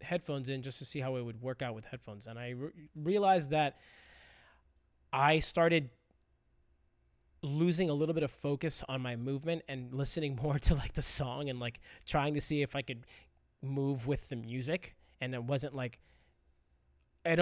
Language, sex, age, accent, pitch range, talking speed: English, male, 20-39, American, 115-145 Hz, 175 wpm